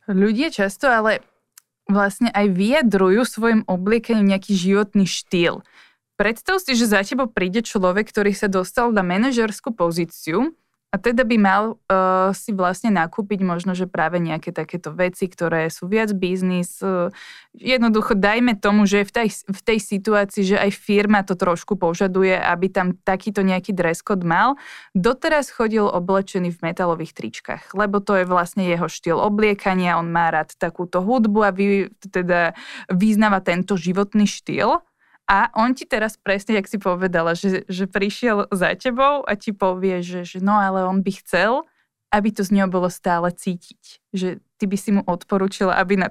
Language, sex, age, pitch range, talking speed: Slovak, female, 20-39, 185-220 Hz, 165 wpm